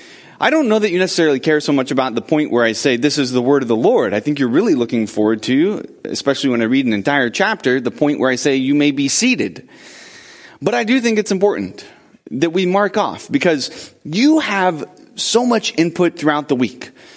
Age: 30-49